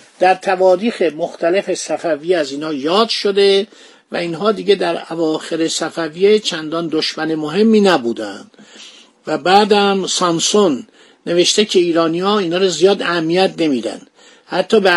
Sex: male